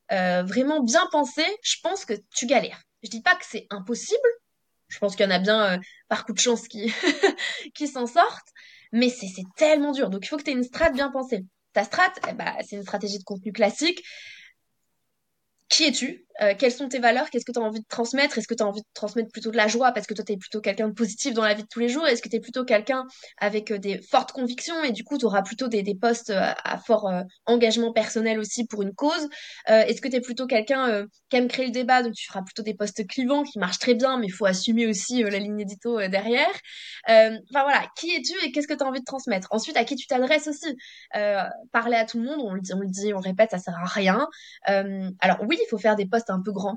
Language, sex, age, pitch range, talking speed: French, female, 20-39, 210-270 Hz, 270 wpm